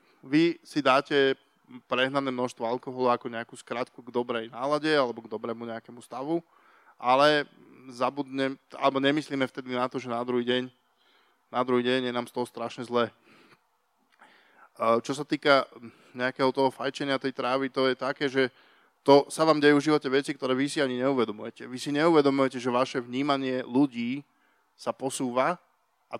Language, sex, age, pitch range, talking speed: Slovak, male, 20-39, 125-140 Hz, 165 wpm